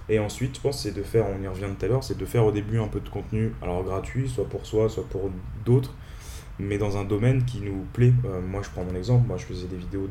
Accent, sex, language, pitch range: French, male, French, 90-110 Hz